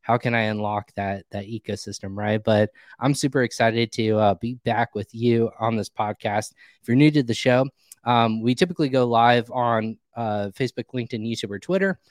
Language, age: English, 20-39